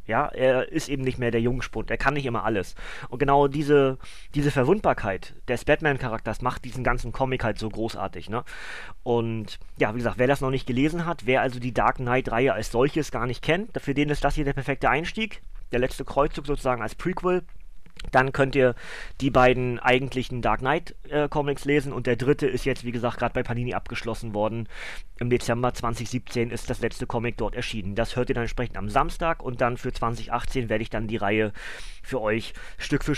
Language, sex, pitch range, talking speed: German, male, 120-155 Hz, 205 wpm